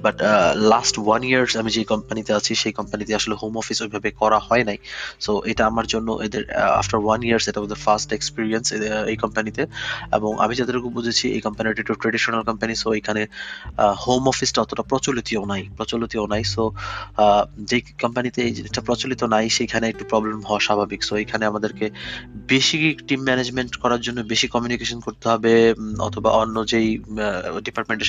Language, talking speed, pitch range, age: Bengali, 75 wpm, 105-125 Hz, 20-39